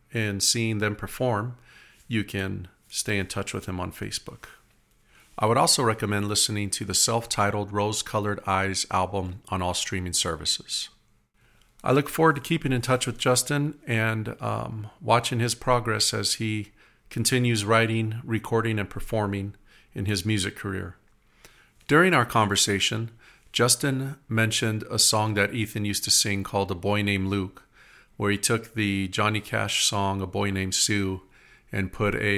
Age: 40-59